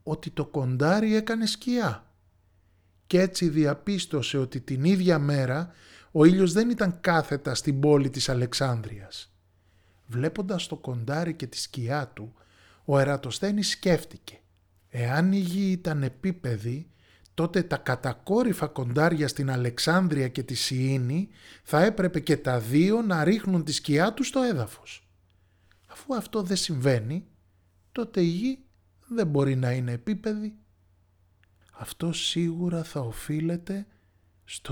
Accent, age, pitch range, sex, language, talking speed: native, 20-39, 105-170 Hz, male, Greek, 130 wpm